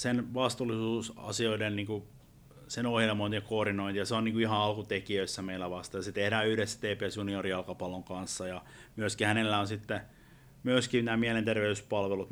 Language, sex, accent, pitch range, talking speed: Finnish, male, native, 95-120 Hz, 140 wpm